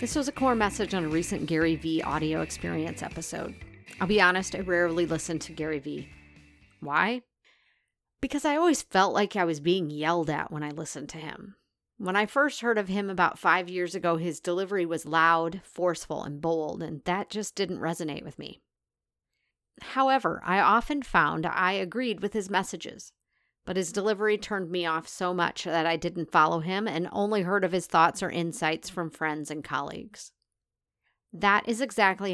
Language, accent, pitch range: English, American, 165-205 Hz